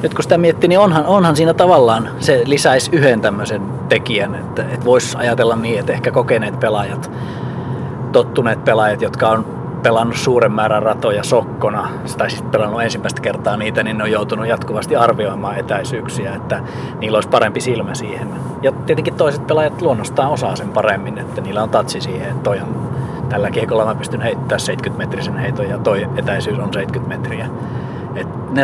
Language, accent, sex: Finnish, native, male